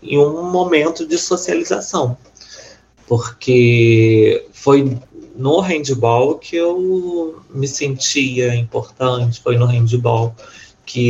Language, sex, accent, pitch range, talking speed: Portuguese, male, Brazilian, 115-140 Hz, 95 wpm